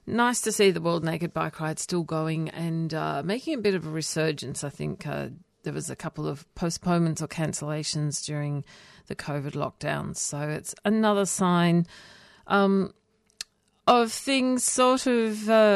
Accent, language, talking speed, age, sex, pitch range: Australian, English, 165 wpm, 40-59, female, 155-195 Hz